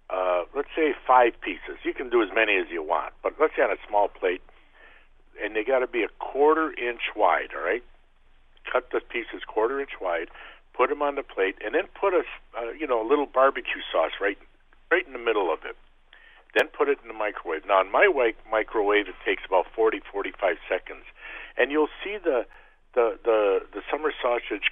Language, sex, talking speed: English, male, 210 wpm